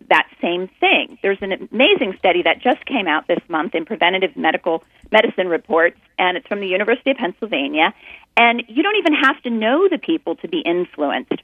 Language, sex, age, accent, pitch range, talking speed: English, female, 40-59, American, 185-285 Hz, 190 wpm